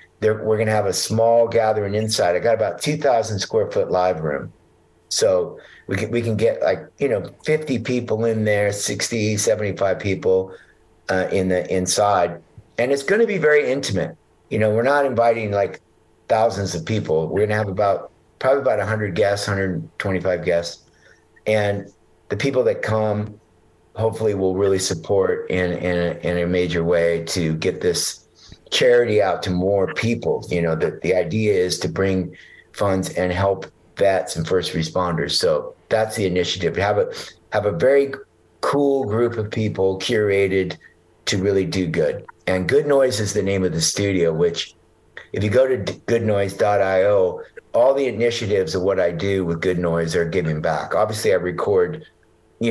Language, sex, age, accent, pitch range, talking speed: English, male, 50-69, American, 90-120 Hz, 175 wpm